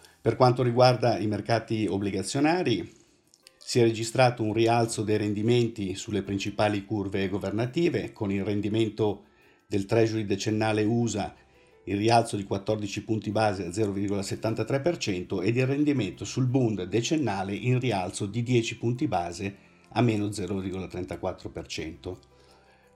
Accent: native